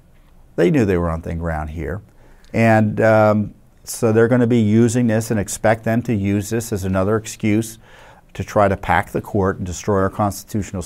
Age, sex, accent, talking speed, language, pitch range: 50-69, male, American, 195 wpm, English, 95-110 Hz